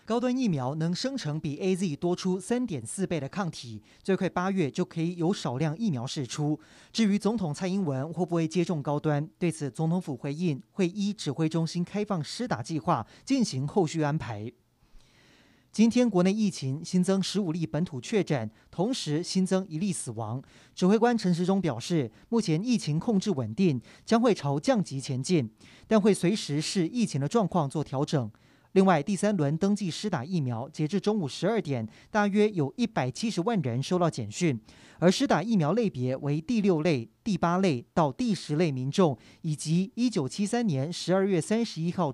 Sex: male